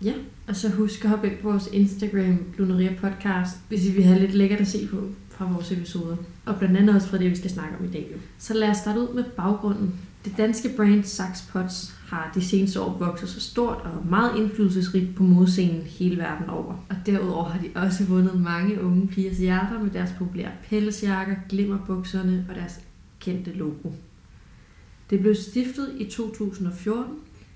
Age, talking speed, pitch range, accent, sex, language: 30-49, 185 wpm, 180-205 Hz, native, female, Danish